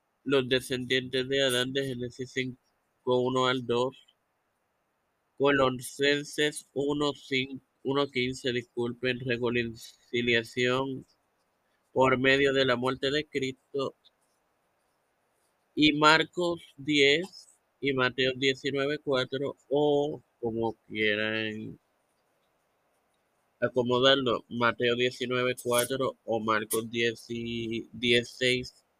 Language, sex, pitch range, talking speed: Spanish, male, 120-135 Hz, 85 wpm